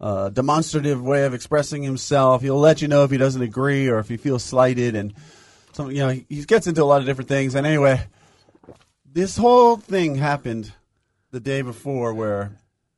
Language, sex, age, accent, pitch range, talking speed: English, male, 30-49, American, 115-150 Hz, 195 wpm